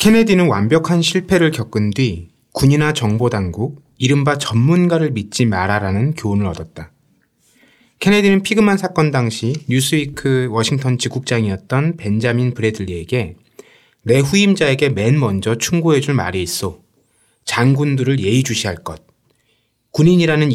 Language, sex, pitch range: Korean, male, 110-155 Hz